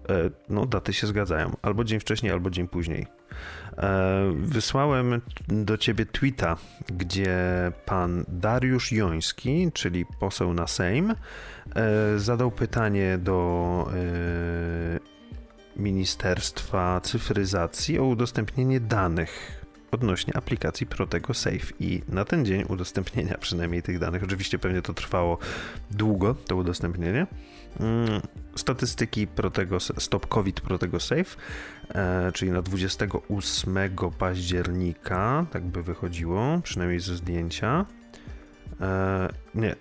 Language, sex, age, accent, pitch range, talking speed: Polish, male, 40-59, native, 90-110 Hz, 100 wpm